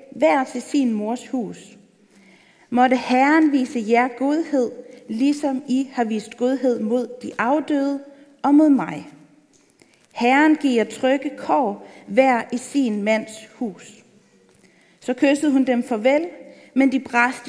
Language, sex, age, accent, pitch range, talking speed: Danish, female, 40-59, native, 225-275 Hz, 130 wpm